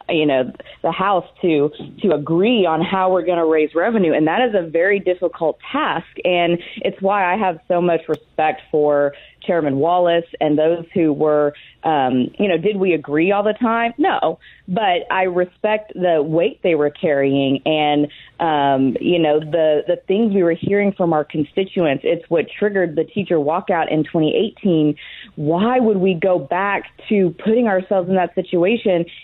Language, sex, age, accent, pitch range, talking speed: English, female, 30-49, American, 155-195 Hz, 175 wpm